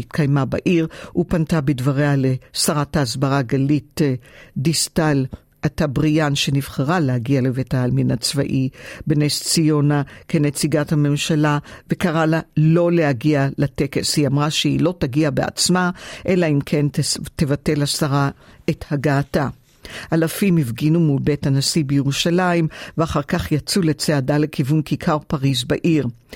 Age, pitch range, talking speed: 50-69, 140-165 Hz, 115 wpm